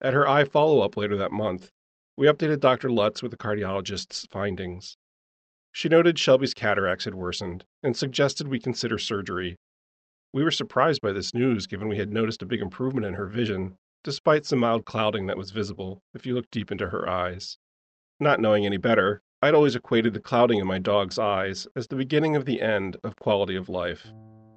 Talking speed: 195 wpm